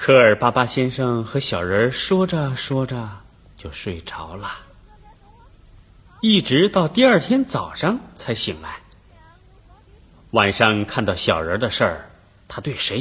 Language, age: Chinese, 30-49